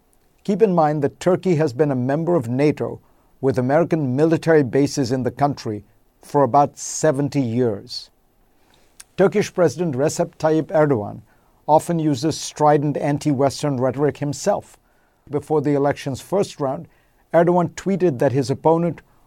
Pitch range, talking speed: 130-165 Hz, 135 wpm